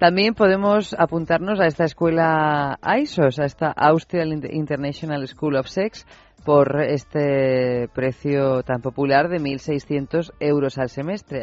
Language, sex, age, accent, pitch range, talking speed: Spanish, female, 30-49, Spanish, 130-160 Hz, 125 wpm